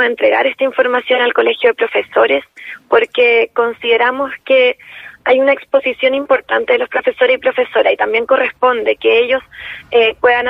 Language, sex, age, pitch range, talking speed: Spanish, female, 20-39, 240-315 Hz, 150 wpm